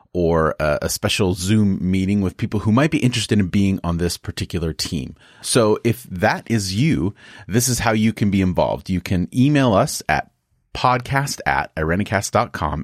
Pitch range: 90-115 Hz